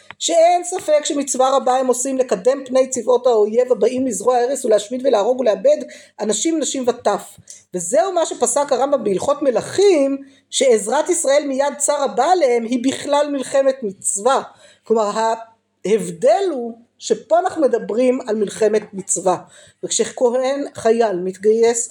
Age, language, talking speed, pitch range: 50-69, Hebrew, 130 wpm, 230-305 Hz